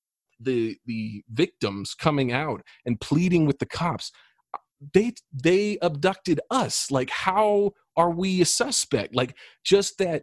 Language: English